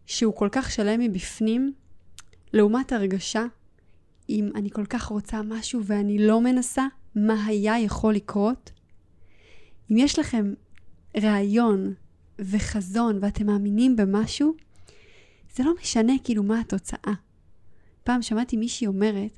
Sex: female